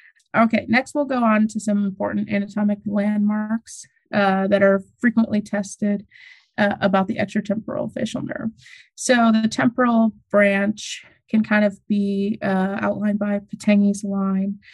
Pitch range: 195-215 Hz